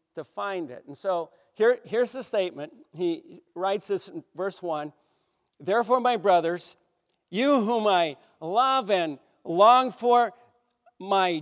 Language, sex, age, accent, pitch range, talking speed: English, male, 50-69, American, 200-255 Hz, 130 wpm